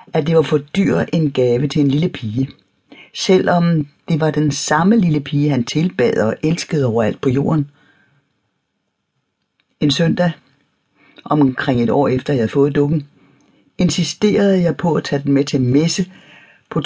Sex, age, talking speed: female, 60-79, 160 wpm